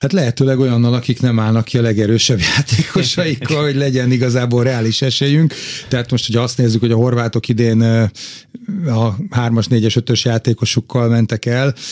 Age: 30-49